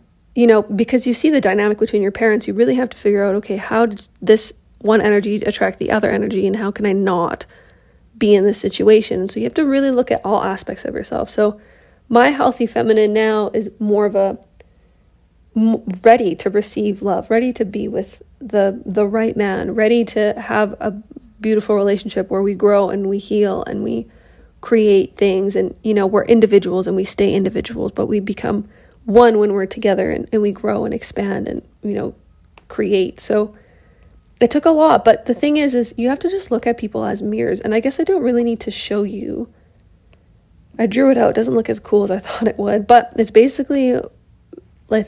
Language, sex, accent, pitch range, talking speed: English, female, American, 200-235 Hz, 210 wpm